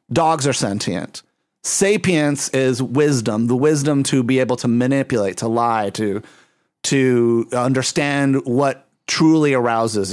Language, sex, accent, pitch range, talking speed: English, male, American, 120-145 Hz, 125 wpm